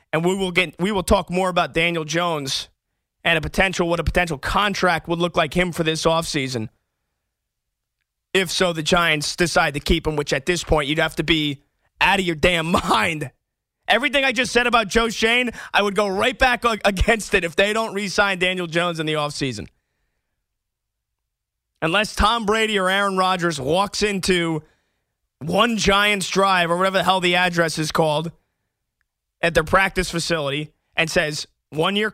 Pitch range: 155-200 Hz